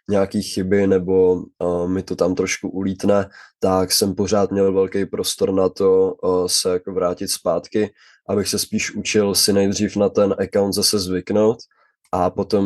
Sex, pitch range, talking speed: male, 90-95 Hz, 165 wpm